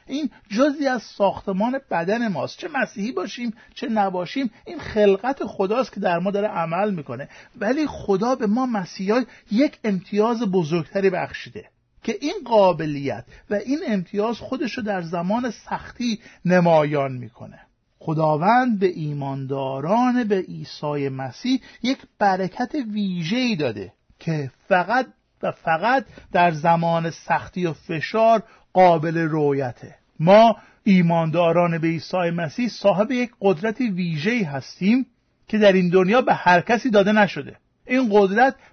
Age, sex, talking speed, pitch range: 50-69, male, 130 wpm, 170-225 Hz